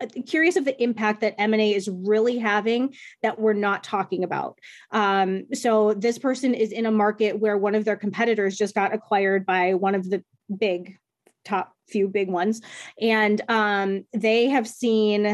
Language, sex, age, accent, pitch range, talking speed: English, female, 20-39, American, 200-230 Hz, 170 wpm